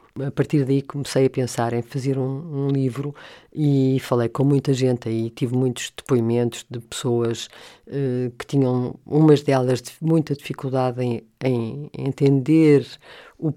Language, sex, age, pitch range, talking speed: Portuguese, female, 50-69, 130-150 Hz, 150 wpm